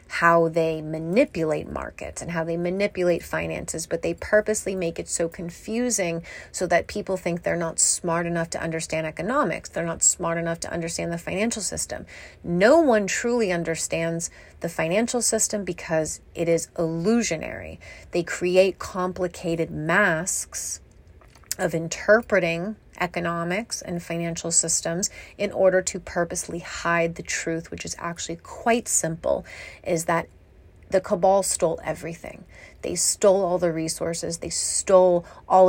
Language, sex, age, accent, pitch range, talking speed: English, female, 30-49, American, 165-190 Hz, 140 wpm